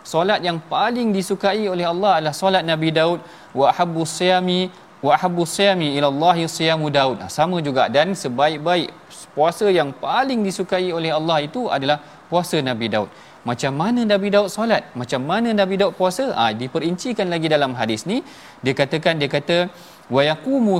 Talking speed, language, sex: 165 wpm, Malayalam, male